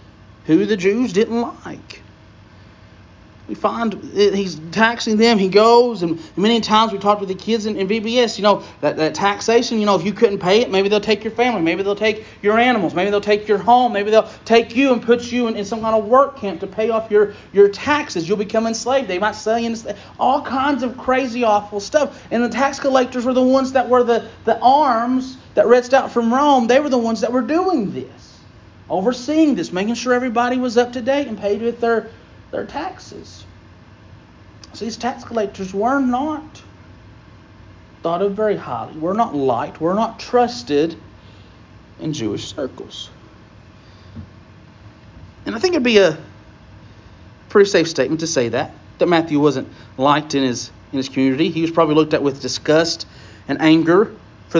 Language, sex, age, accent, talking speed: English, male, 30-49, American, 190 wpm